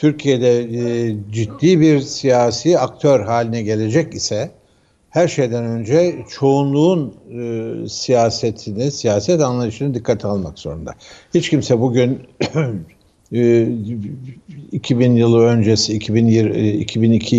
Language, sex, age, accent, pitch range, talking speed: Turkish, male, 60-79, native, 105-135 Hz, 90 wpm